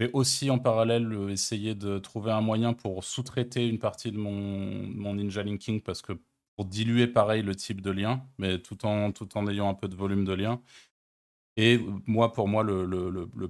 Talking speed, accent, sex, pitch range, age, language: 205 wpm, French, male, 95-110 Hz, 20-39, French